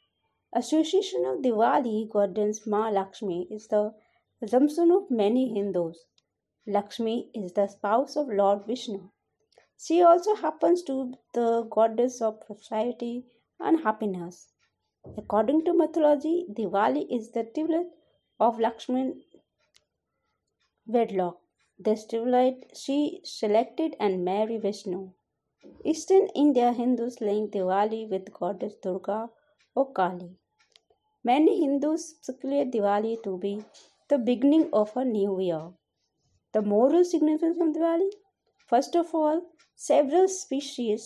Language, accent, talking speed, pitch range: Hindi, native, 115 wpm, 210-295 Hz